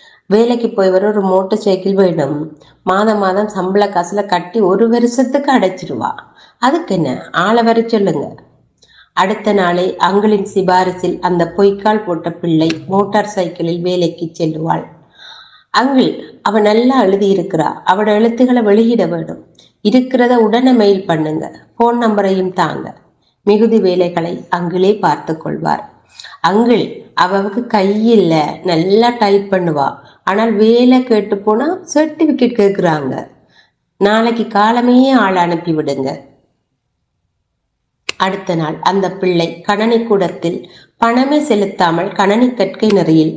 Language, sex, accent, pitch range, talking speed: Tamil, female, native, 175-225 Hz, 110 wpm